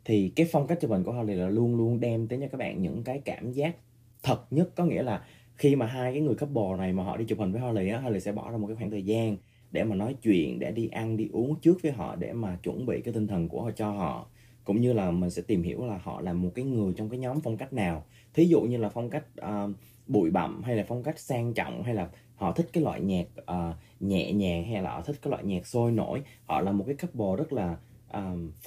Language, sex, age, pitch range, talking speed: Vietnamese, male, 20-39, 105-135 Hz, 275 wpm